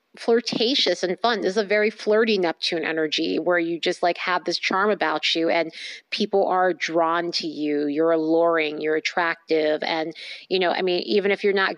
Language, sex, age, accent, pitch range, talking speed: English, female, 30-49, American, 175-215 Hz, 190 wpm